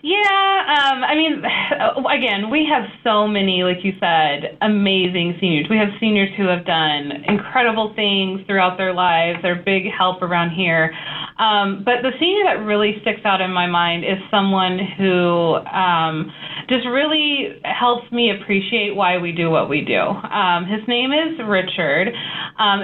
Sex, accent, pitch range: female, American, 180-225 Hz